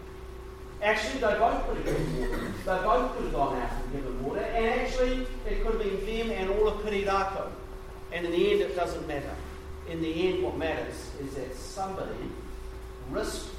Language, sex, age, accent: English, male, 40-59, Australian